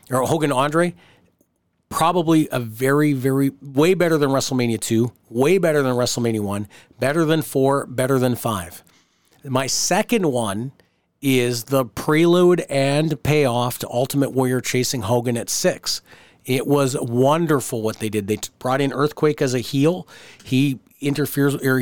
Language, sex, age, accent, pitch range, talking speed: English, male, 40-59, American, 120-145 Hz, 150 wpm